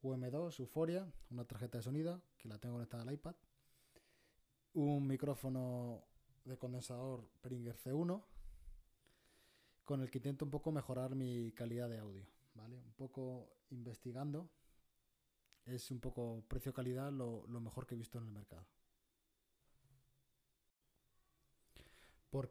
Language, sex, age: Spanish, male, 20-39